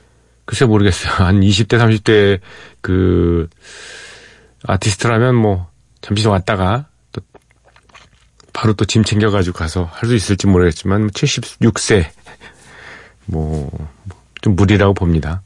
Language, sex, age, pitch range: Korean, male, 40-59, 90-120 Hz